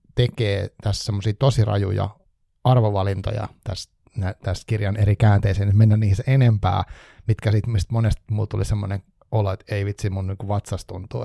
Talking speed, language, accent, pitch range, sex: 145 wpm, Finnish, native, 100-120 Hz, male